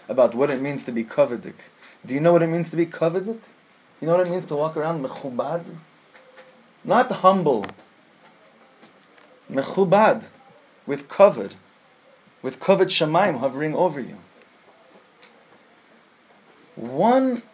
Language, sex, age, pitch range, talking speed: English, male, 30-49, 160-200 Hz, 125 wpm